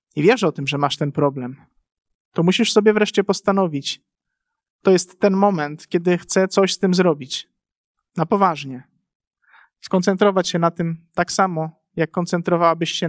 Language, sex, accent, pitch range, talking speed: Polish, male, native, 165-205 Hz, 155 wpm